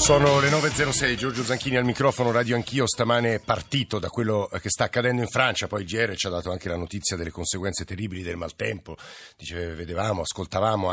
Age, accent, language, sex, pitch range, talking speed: 50-69, native, Italian, male, 100-120 Hz, 200 wpm